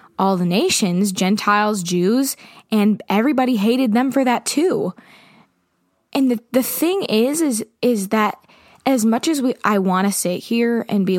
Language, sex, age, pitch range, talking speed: English, female, 20-39, 205-255 Hz, 165 wpm